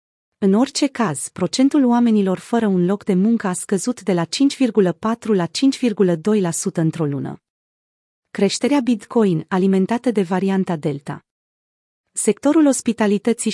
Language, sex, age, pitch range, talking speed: Romanian, female, 30-49, 180-225 Hz, 120 wpm